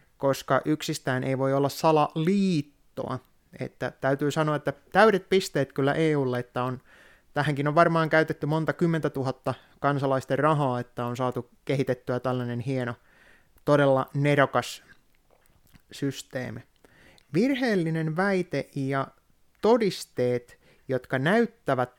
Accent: native